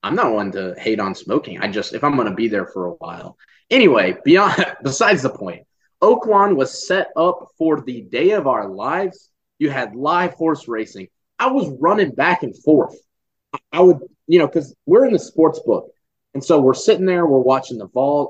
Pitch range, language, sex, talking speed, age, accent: 120-165 Hz, English, male, 205 wpm, 20-39, American